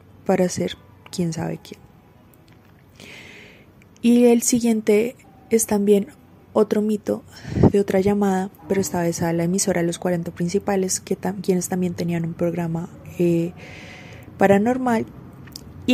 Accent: Colombian